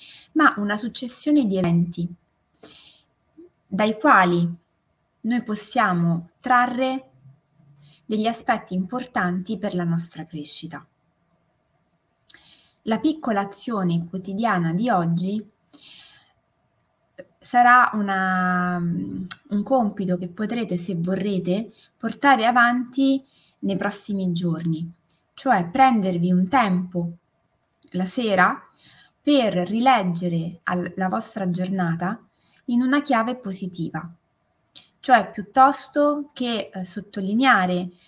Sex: female